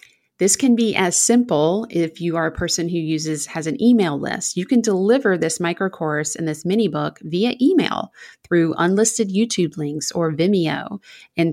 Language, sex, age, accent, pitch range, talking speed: English, female, 30-49, American, 160-210 Hz, 180 wpm